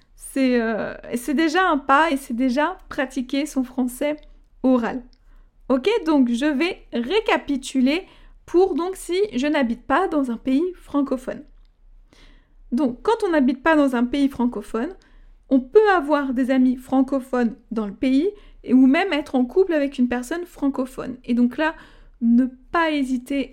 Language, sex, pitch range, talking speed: French, female, 255-305 Hz, 160 wpm